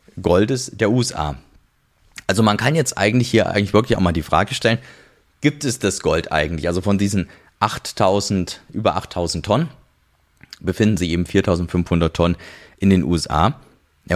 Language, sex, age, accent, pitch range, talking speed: German, male, 30-49, German, 85-110 Hz, 155 wpm